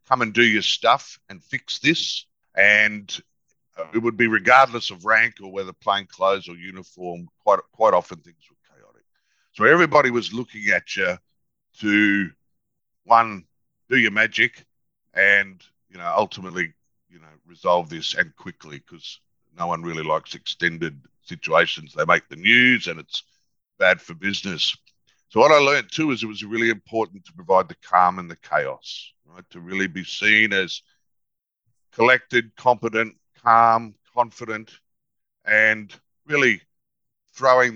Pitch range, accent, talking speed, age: 95-115 Hz, Australian, 150 wpm, 50-69